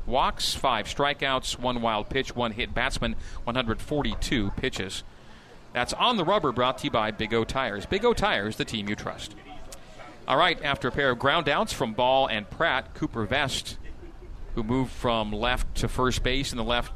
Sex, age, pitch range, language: male, 40-59, 100-125 Hz, English